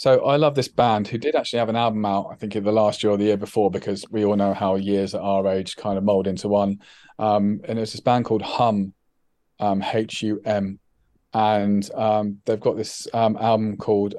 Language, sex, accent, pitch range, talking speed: English, male, British, 105-115 Hz, 225 wpm